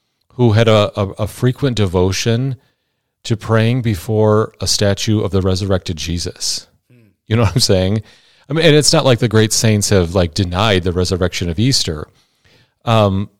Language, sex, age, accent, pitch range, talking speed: English, male, 40-59, American, 95-115 Hz, 170 wpm